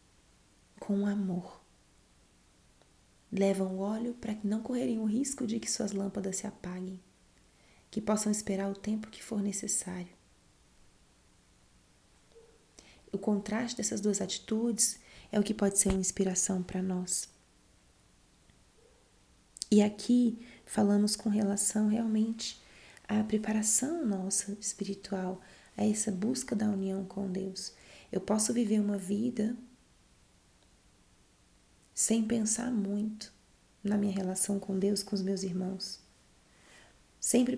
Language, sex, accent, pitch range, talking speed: Portuguese, female, Brazilian, 195-215 Hz, 120 wpm